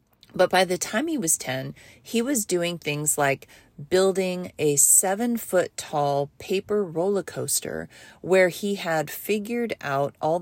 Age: 30-49